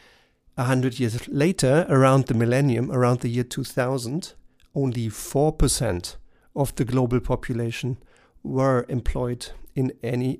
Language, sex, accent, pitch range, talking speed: German, male, German, 125-155 Hz, 120 wpm